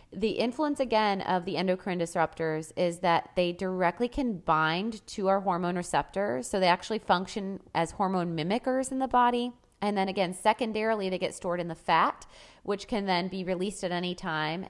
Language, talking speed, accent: English, 185 wpm, American